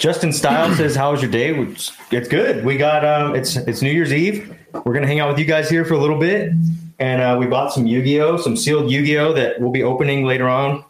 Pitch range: 115-155 Hz